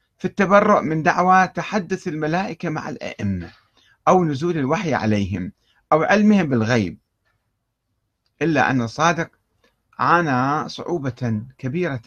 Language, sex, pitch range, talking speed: Arabic, male, 115-165 Hz, 105 wpm